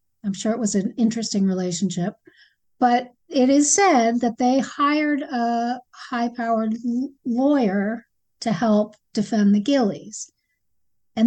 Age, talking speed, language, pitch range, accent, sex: 50-69, 135 wpm, English, 215-260 Hz, American, female